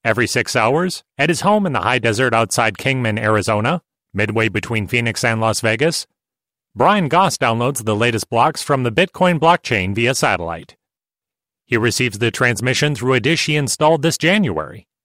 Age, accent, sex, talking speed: 30-49, American, male, 170 wpm